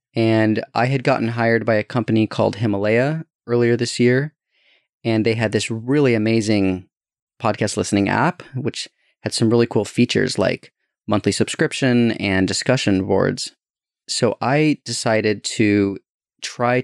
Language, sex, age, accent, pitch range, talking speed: English, male, 30-49, American, 105-125 Hz, 140 wpm